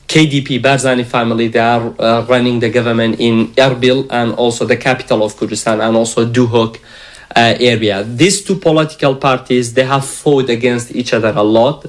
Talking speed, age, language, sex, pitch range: 170 wpm, 40-59, English, male, 115-130 Hz